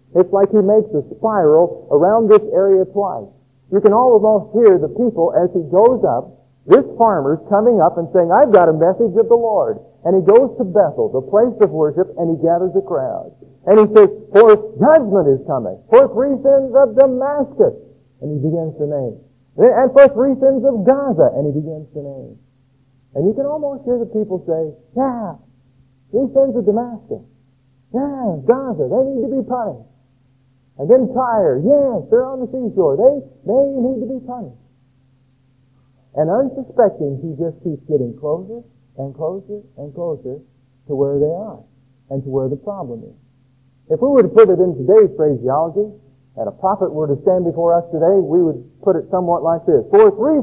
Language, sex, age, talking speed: English, male, 50-69, 185 wpm